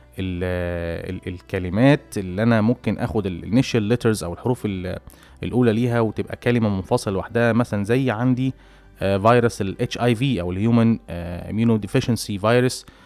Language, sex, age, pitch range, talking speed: Arabic, male, 20-39, 95-120 Hz, 135 wpm